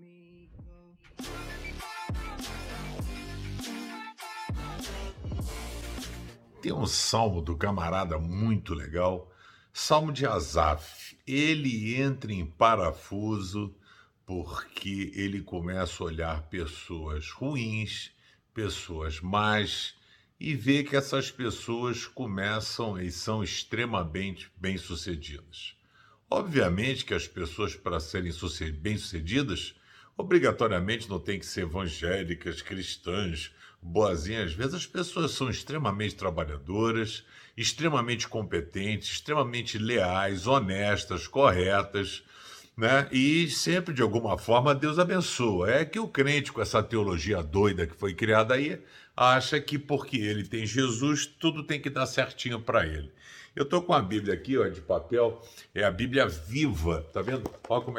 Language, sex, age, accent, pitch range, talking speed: Portuguese, male, 60-79, Brazilian, 90-130 Hz, 115 wpm